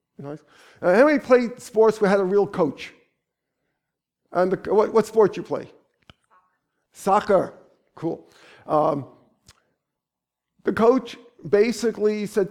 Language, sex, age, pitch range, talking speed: English, male, 50-69, 175-220 Hz, 115 wpm